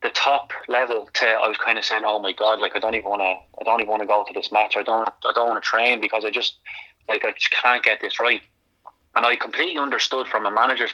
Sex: male